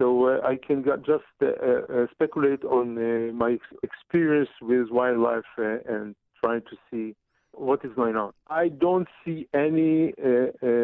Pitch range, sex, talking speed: 110-130 Hz, male, 170 wpm